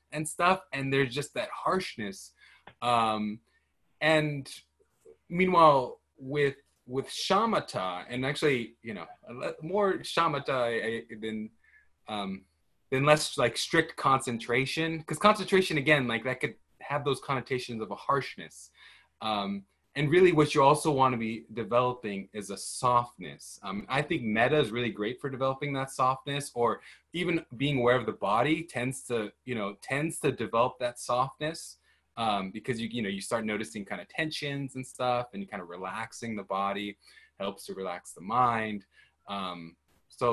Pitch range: 110-150 Hz